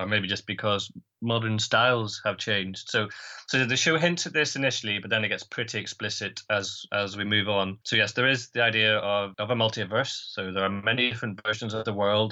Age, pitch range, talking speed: 20-39, 100-120 Hz, 225 wpm